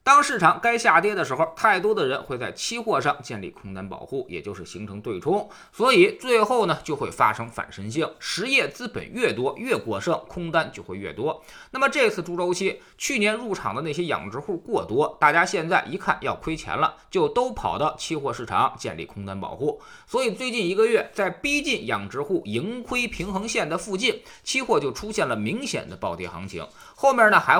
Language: Chinese